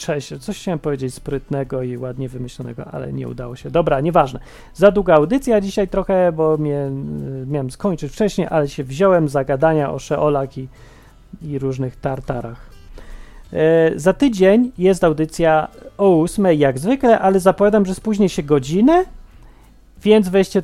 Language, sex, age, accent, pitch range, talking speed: Polish, male, 30-49, native, 140-205 Hz, 150 wpm